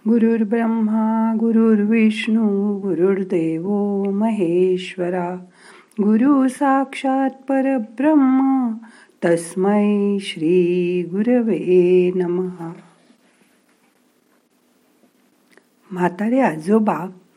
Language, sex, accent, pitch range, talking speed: Marathi, female, native, 180-245 Hz, 35 wpm